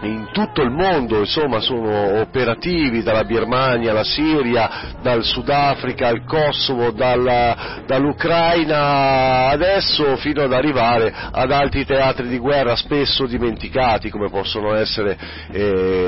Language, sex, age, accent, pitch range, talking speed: Italian, male, 40-59, native, 110-140 Hz, 120 wpm